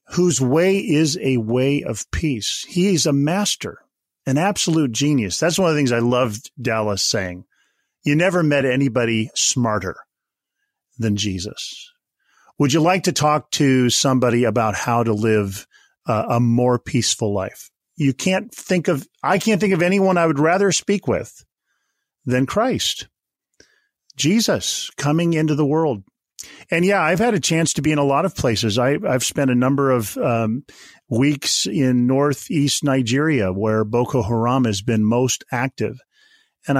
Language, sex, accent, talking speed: English, male, American, 160 wpm